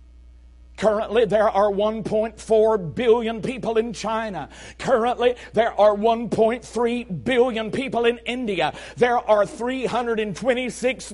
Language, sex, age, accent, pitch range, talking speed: English, male, 50-69, American, 235-295 Hz, 100 wpm